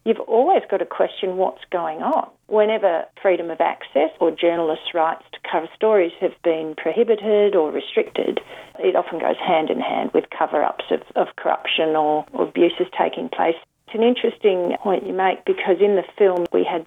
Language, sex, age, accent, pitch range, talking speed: English, female, 40-59, Australian, 160-190 Hz, 175 wpm